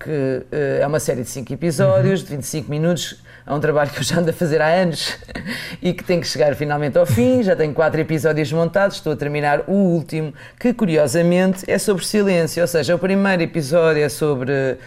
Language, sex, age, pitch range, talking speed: Portuguese, female, 30-49, 130-170 Hz, 205 wpm